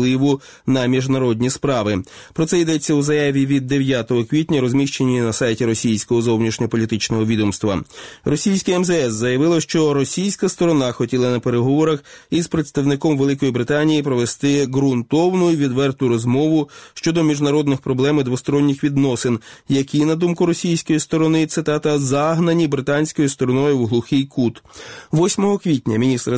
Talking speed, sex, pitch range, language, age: 125 wpm, male, 125-150 Hz, Ukrainian, 20-39